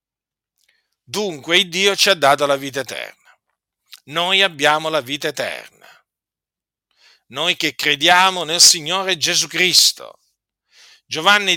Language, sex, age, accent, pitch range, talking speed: Italian, male, 50-69, native, 150-190 Hz, 110 wpm